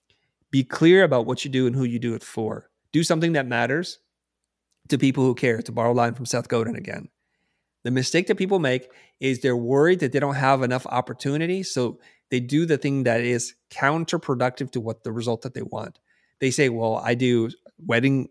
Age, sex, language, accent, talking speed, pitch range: 30-49, male, English, American, 205 wpm, 120-140 Hz